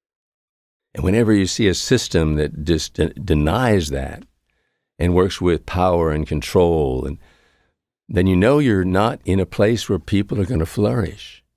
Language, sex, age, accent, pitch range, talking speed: English, male, 60-79, American, 80-95 Hz, 160 wpm